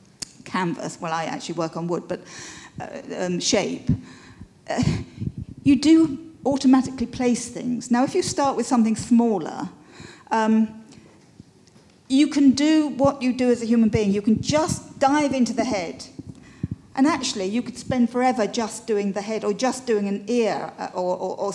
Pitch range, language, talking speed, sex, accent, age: 195-255 Hz, English, 165 wpm, female, British, 50-69